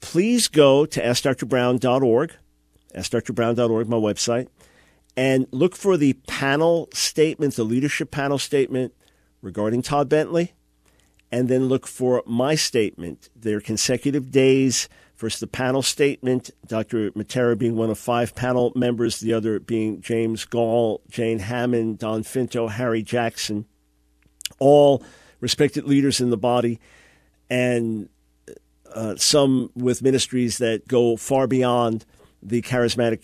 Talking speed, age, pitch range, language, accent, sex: 125 wpm, 50-69, 110-130 Hz, English, American, male